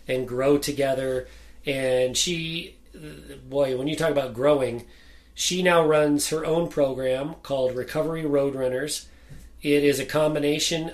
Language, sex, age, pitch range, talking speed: English, male, 40-59, 125-160 Hz, 135 wpm